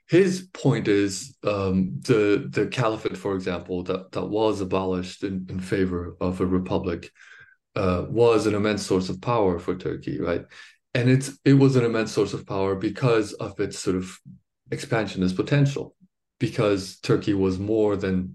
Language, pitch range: English, 95-120 Hz